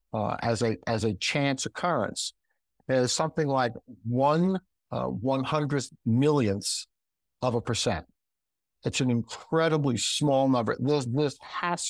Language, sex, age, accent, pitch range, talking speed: English, male, 60-79, American, 110-145 Hz, 130 wpm